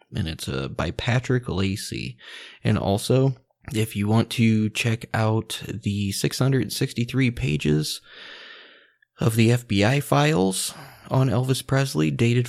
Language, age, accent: English, 20-39, American